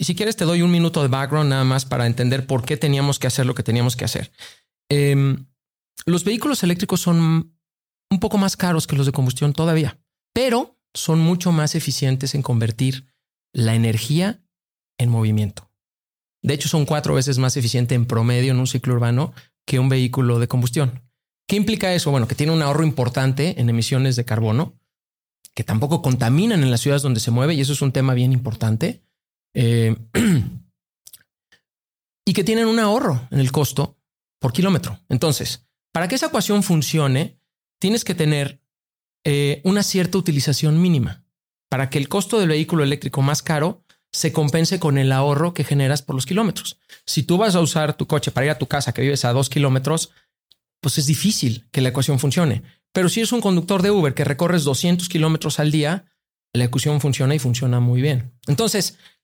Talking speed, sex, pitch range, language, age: 185 wpm, male, 130-170 Hz, Spanish, 40-59